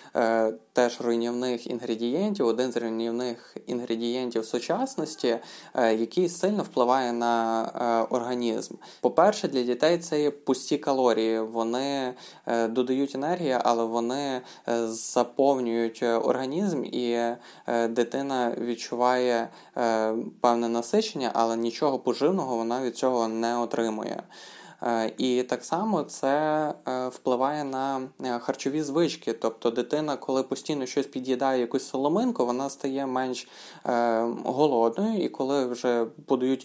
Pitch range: 120-140 Hz